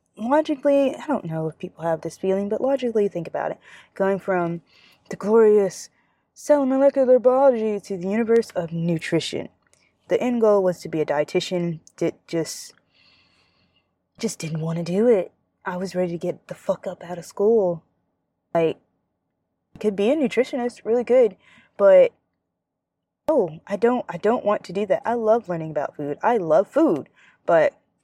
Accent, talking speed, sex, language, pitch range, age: American, 170 wpm, female, English, 165-240 Hz, 20-39